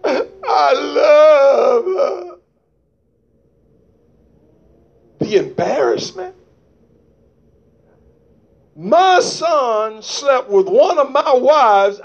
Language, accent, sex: English, American, male